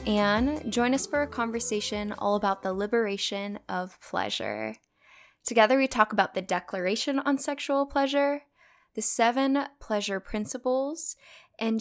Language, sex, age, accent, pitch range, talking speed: English, female, 10-29, American, 190-225 Hz, 130 wpm